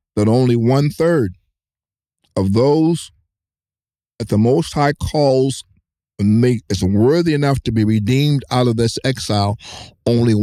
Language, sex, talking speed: English, male, 120 wpm